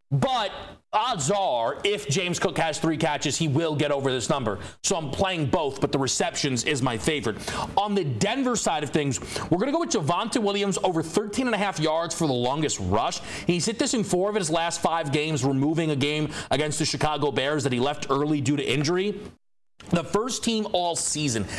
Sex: male